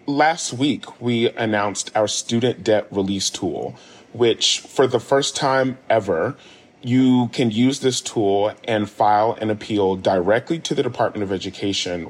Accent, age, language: American, 30-49, English